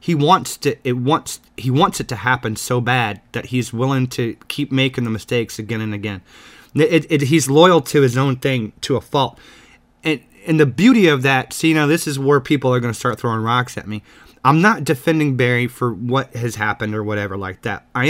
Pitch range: 120-155 Hz